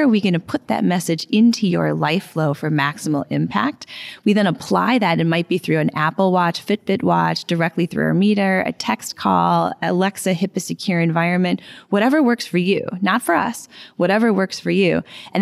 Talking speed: 195 wpm